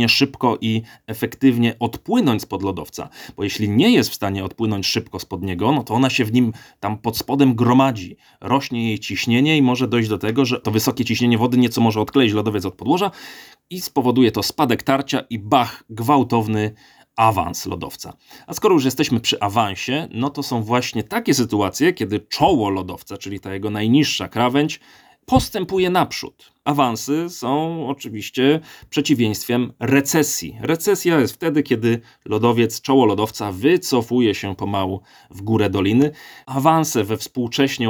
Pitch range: 105-135 Hz